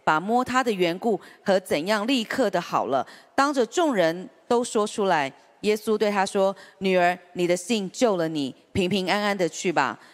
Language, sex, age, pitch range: Chinese, female, 40-59, 170-235 Hz